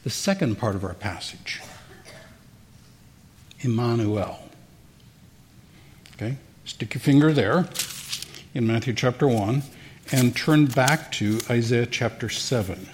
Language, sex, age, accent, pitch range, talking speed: English, male, 60-79, American, 115-155 Hz, 105 wpm